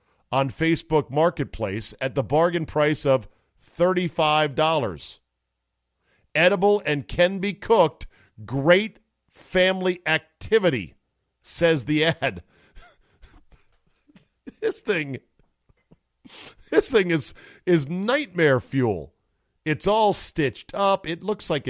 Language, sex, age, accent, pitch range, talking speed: English, male, 50-69, American, 105-150 Hz, 100 wpm